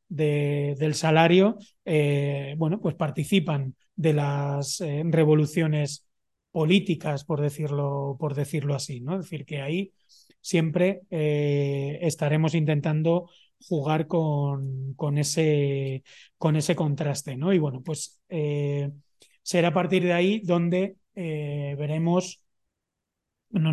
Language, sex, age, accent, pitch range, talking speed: Spanish, male, 30-49, Spanish, 145-165 Hz, 120 wpm